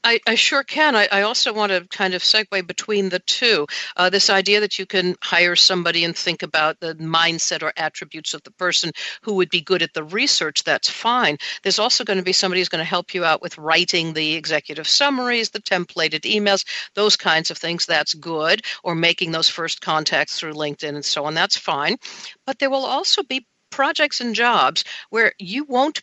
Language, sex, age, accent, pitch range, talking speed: English, female, 60-79, American, 160-210 Hz, 210 wpm